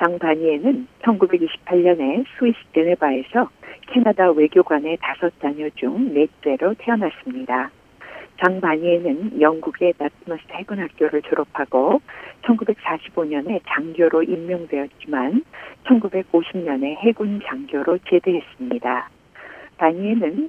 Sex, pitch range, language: female, 160-235 Hz, Korean